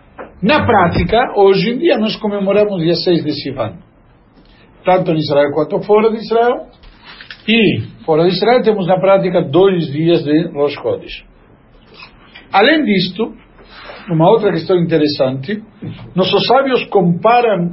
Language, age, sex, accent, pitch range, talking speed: Portuguese, 60-79, male, Italian, 165-230 Hz, 130 wpm